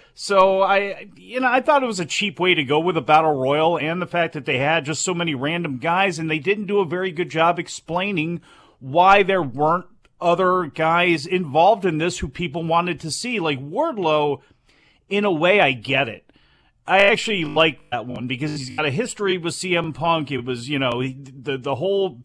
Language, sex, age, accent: English, male, 40-59, American